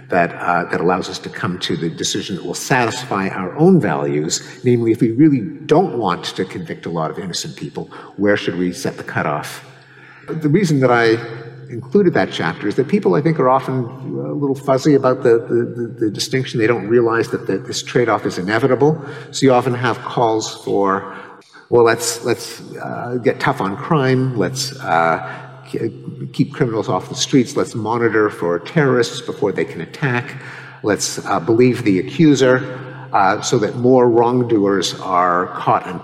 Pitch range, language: 115-145 Hz, English